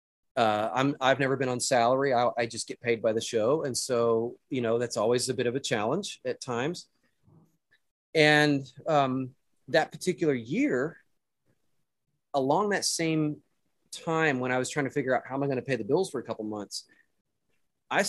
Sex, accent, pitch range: male, American, 115-145 Hz